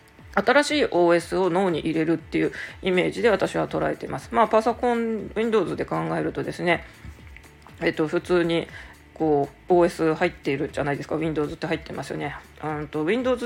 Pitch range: 160-220 Hz